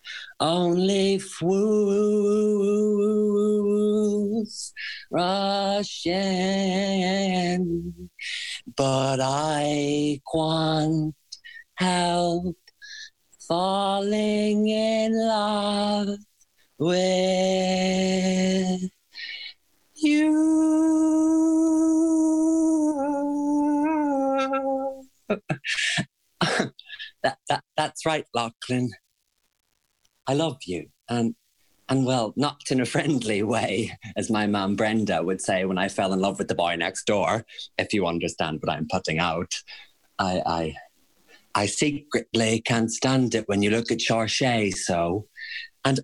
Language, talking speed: English, 85 wpm